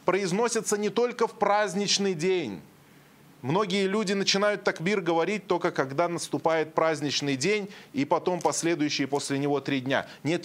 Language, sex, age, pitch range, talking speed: Russian, male, 20-39, 150-195 Hz, 140 wpm